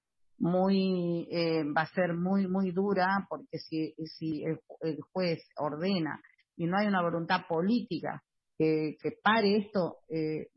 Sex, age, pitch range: female, 40-59, 155-180 Hz